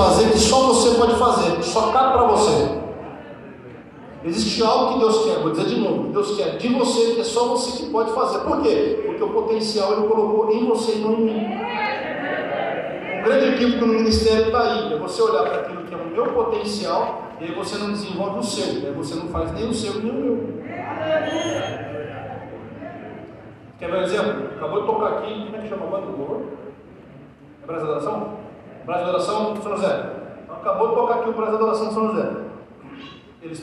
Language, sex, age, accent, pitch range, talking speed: Portuguese, male, 40-59, Brazilian, 215-260 Hz, 210 wpm